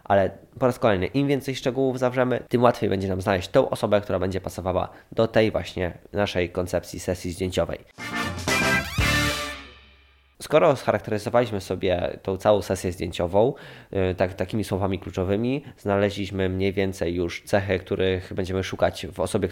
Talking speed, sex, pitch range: 140 wpm, male, 95-115 Hz